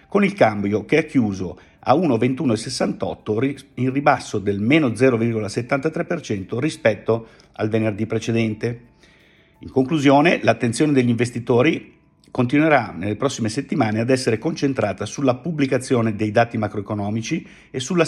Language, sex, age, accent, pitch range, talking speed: Italian, male, 50-69, native, 105-135 Hz, 120 wpm